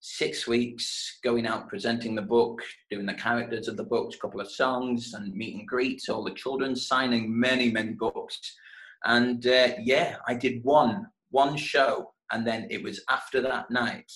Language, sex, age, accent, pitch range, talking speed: English, male, 20-39, British, 110-130 Hz, 180 wpm